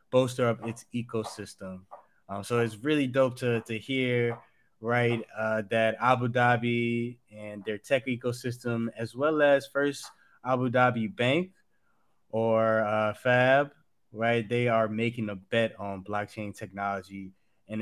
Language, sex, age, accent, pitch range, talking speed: English, male, 20-39, American, 110-125 Hz, 140 wpm